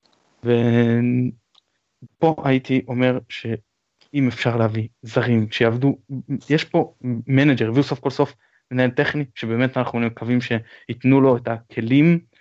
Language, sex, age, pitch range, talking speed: Hebrew, male, 20-39, 120-155 Hz, 115 wpm